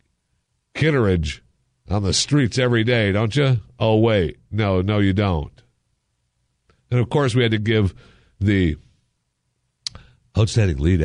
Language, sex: English, male